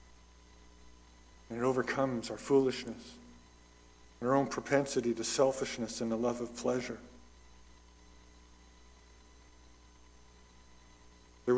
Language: English